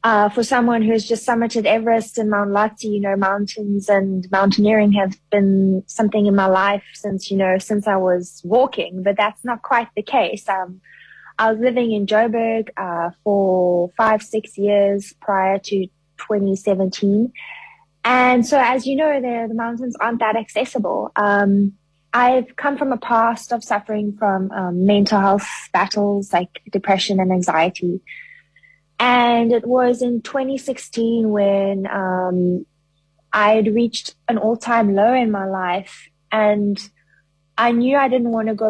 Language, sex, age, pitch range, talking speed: English, female, 20-39, 195-235 Hz, 155 wpm